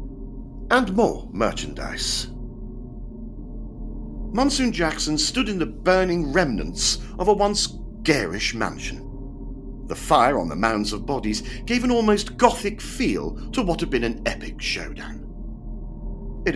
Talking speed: 125 wpm